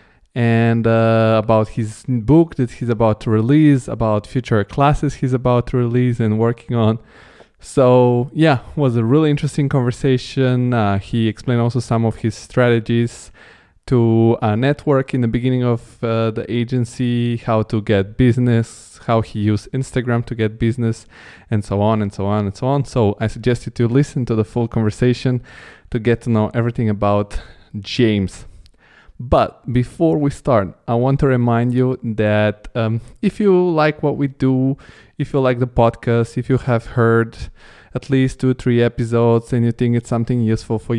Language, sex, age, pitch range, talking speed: English, male, 20-39, 110-130 Hz, 175 wpm